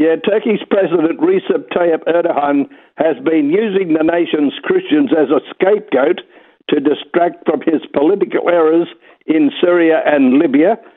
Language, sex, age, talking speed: English, male, 60-79, 135 wpm